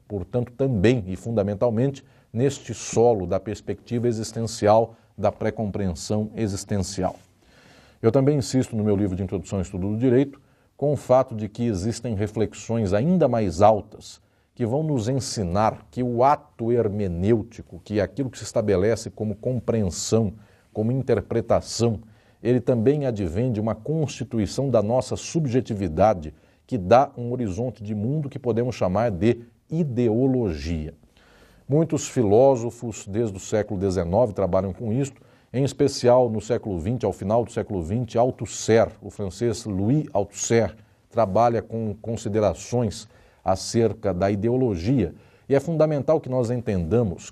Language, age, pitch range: Portuguese, 40-59, 105-125 Hz